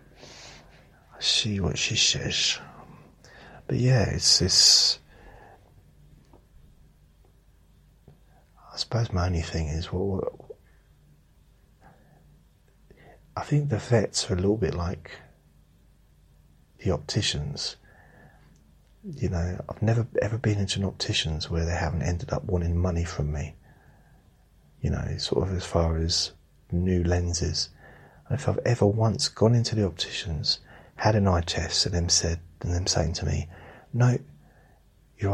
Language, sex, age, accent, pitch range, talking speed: English, male, 40-59, British, 85-110 Hz, 130 wpm